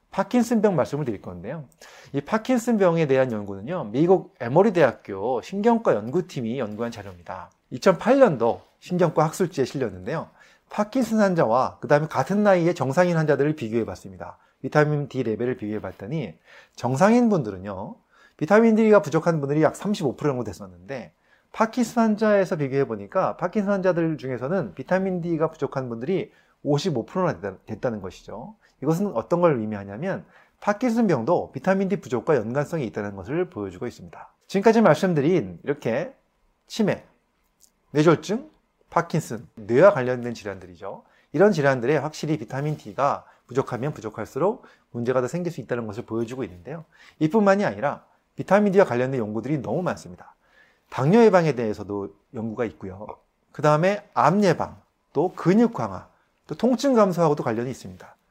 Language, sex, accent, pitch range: Korean, male, native, 120-190 Hz